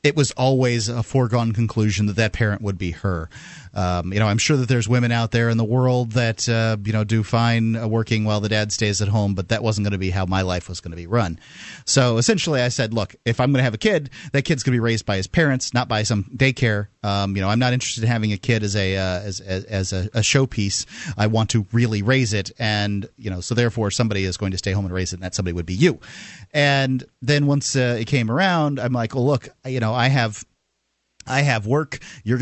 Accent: American